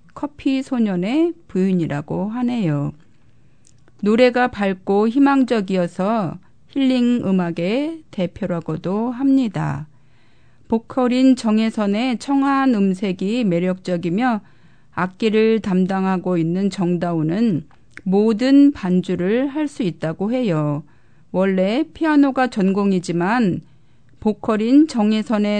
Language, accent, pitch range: Korean, native, 175-230 Hz